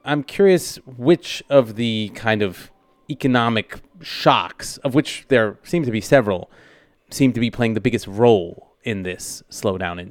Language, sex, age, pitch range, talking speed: English, male, 30-49, 100-130 Hz, 160 wpm